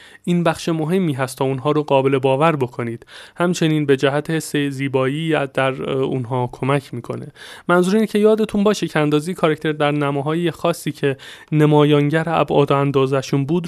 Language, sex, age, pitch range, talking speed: Persian, male, 30-49, 130-155 Hz, 155 wpm